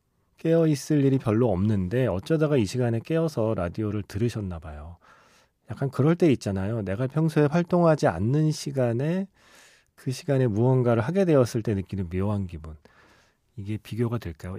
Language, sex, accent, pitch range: Korean, male, native, 105-150 Hz